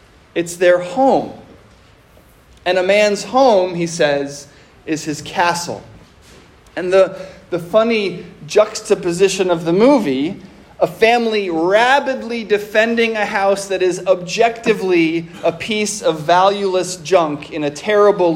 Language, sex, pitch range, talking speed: English, male, 175-220 Hz, 120 wpm